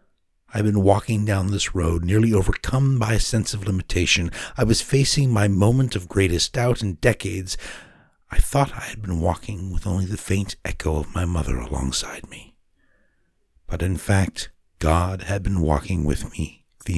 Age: 60-79